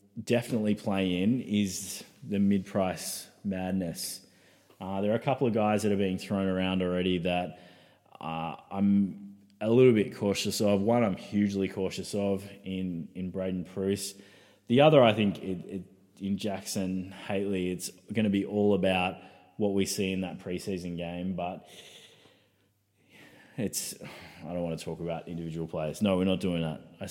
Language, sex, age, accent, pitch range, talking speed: English, male, 20-39, Australian, 90-105 Hz, 165 wpm